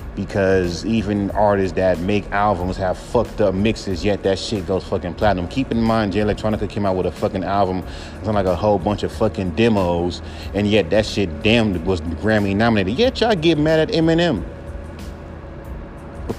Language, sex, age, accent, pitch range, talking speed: English, male, 30-49, American, 95-120 Hz, 185 wpm